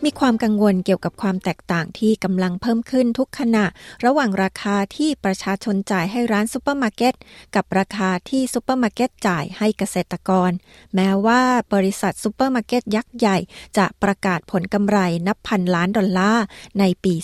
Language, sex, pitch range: Thai, female, 190-230 Hz